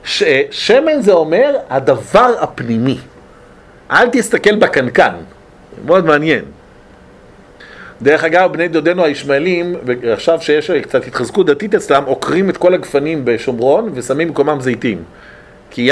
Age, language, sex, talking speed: 50-69, Hebrew, male, 120 wpm